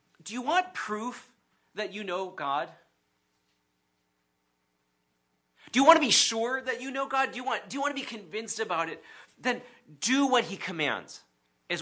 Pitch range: 175-255 Hz